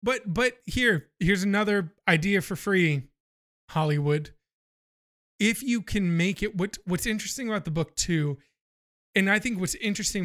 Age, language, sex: 30-49, English, male